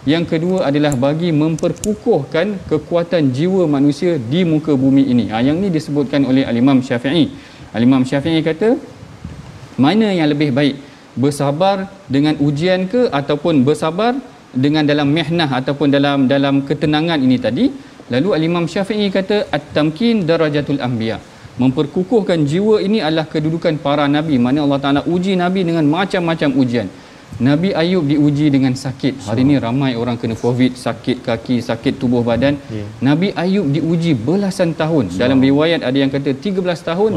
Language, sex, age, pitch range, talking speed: Malayalam, male, 40-59, 140-180 Hz, 150 wpm